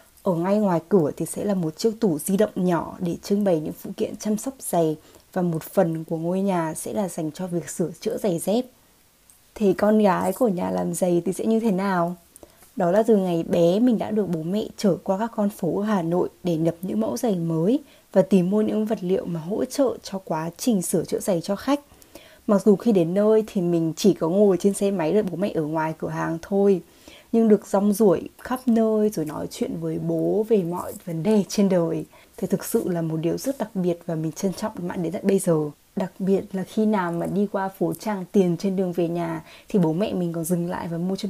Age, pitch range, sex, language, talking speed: 20-39, 170-215 Hz, female, Vietnamese, 245 wpm